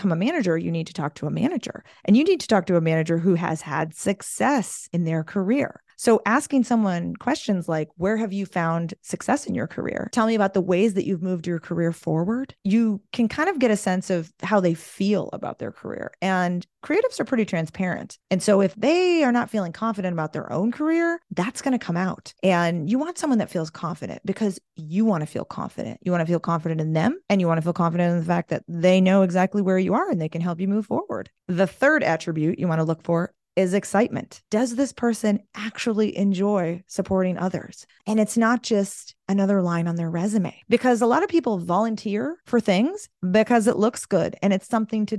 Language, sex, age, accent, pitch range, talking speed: English, female, 30-49, American, 175-240 Hz, 225 wpm